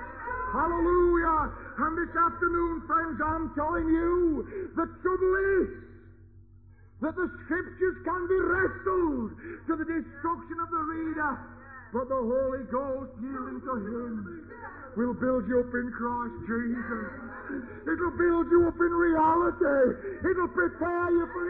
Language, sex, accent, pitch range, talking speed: English, male, American, 275-360 Hz, 130 wpm